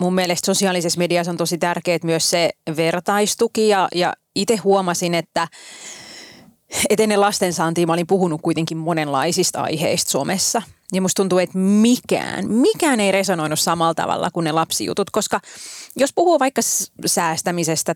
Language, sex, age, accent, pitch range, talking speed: Finnish, female, 30-49, native, 165-210 Hz, 135 wpm